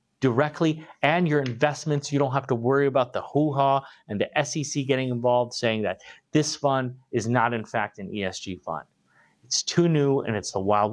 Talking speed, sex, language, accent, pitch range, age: 190 wpm, male, English, American, 110-150 Hz, 30-49